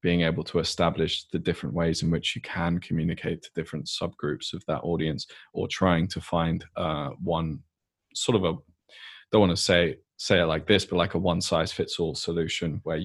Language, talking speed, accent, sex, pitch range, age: English, 200 wpm, British, male, 85-100 Hz, 20-39